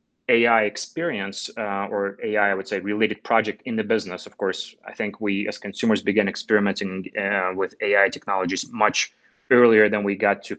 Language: English